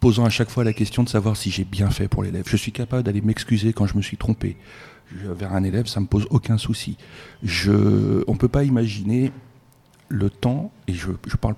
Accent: French